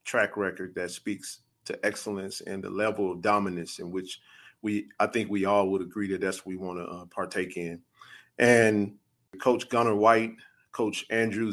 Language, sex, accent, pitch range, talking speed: English, male, American, 100-125 Hz, 170 wpm